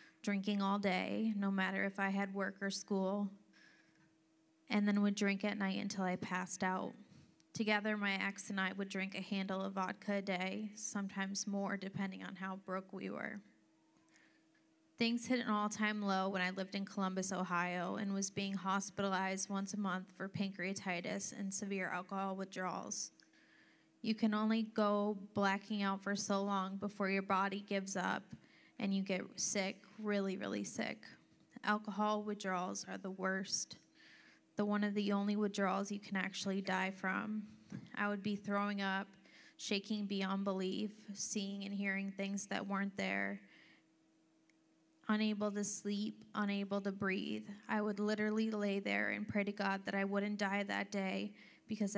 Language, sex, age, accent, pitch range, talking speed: English, female, 20-39, American, 190-205 Hz, 160 wpm